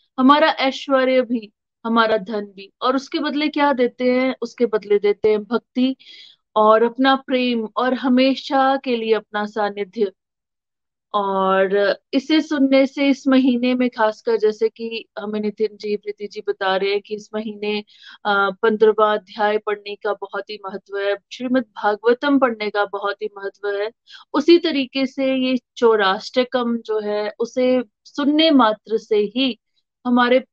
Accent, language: native, Hindi